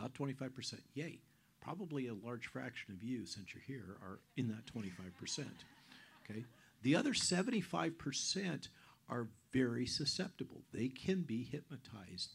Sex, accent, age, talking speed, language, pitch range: male, American, 50-69, 130 wpm, English, 105-135 Hz